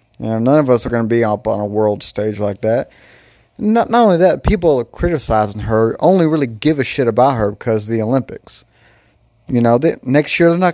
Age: 30-49